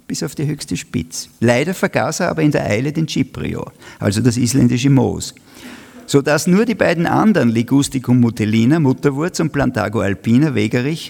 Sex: male